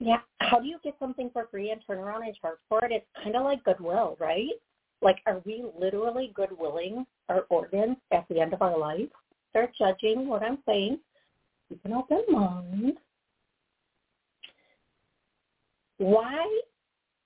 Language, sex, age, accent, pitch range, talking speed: English, female, 50-69, American, 185-255 Hz, 155 wpm